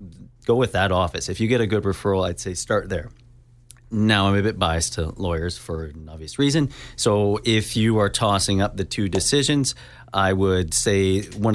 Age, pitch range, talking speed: 30-49, 90-115 Hz, 195 wpm